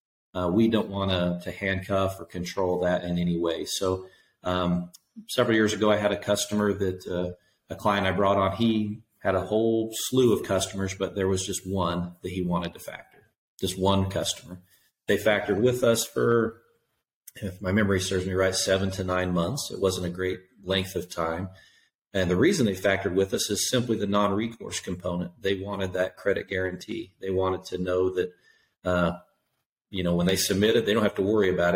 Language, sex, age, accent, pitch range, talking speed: English, male, 40-59, American, 90-100 Hz, 200 wpm